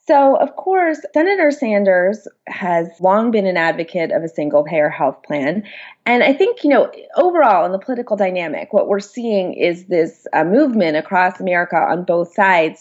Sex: female